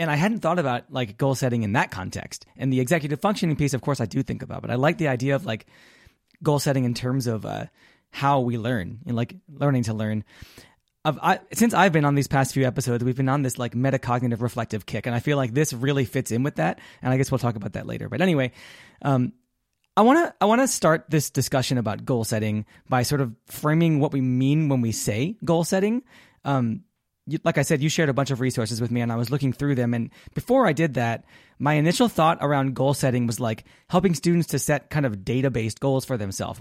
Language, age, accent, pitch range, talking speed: English, 20-39, American, 120-150 Hz, 240 wpm